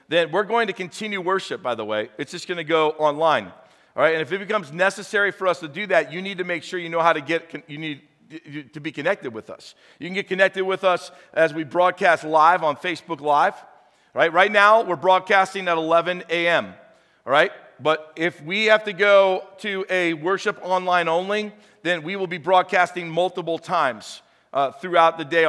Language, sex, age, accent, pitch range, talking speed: English, male, 50-69, American, 150-180 Hz, 215 wpm